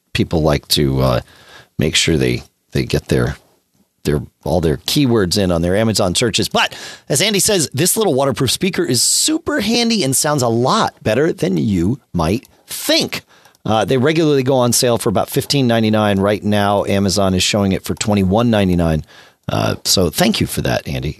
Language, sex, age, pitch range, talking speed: English, male, 40-59, 100-155 Hz, 180 wpm